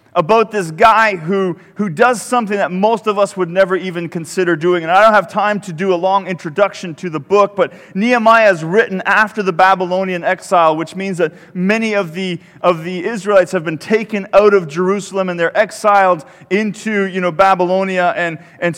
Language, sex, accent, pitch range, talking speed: English, male, American, 175-205 Hz, 195 wpm